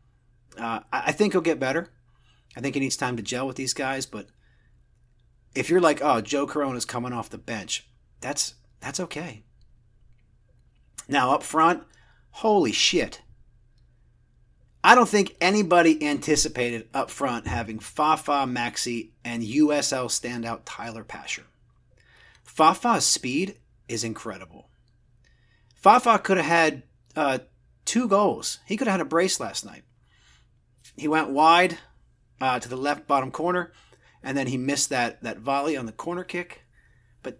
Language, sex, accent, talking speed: English, male, American, 145 wpm